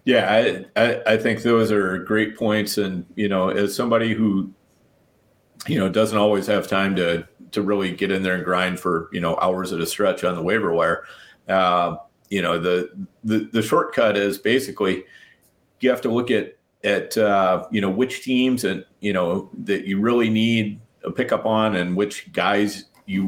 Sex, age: male, 40-59